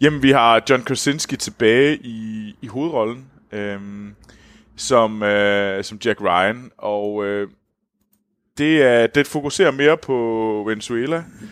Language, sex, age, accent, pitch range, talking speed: Danish, male, 20-39, native, 105-145 Hz, 125 wpm